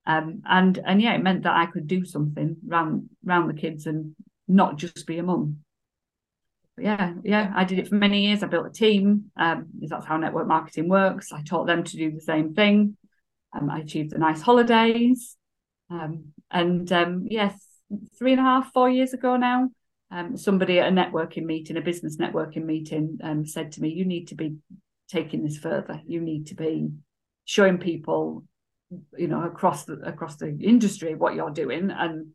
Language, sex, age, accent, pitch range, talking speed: English, female, 40-59, British, 160-190 Hz, 190 wpm